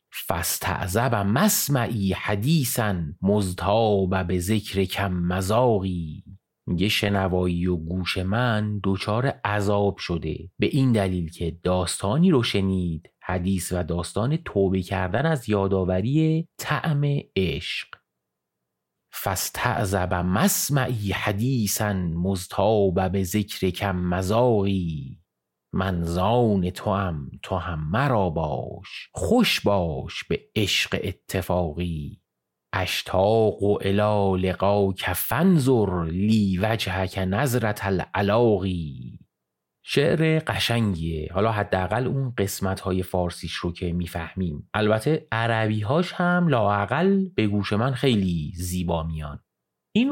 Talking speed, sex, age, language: 100 wpm, male, 30-49, Persian